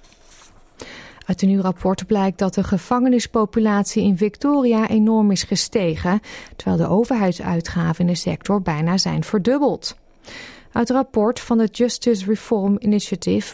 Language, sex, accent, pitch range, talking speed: Dutch, female, Dutch, 185-230 Hz, 135 wpm